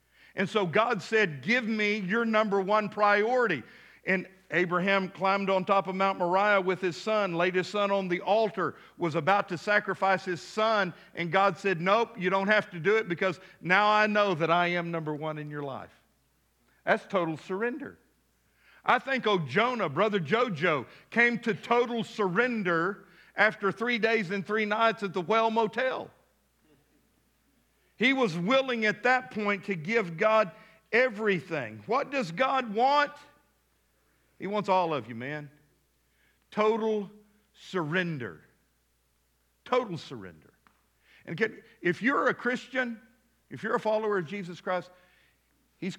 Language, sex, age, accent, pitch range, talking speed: English, male, 50-69, American, 165-215 Hz, 150 wpm